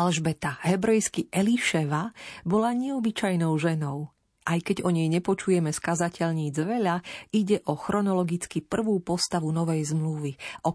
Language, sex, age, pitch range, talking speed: Slovak, female, 40-59, 160-205 Hz, 115 wpm